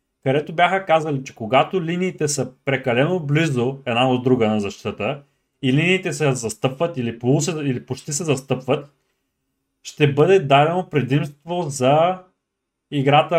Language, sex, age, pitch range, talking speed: Bulgarian, male, 30-49, 135-175 Hz, 140 wpm